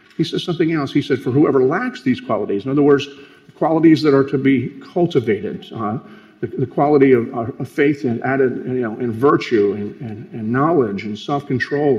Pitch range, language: 125-160 Hz, English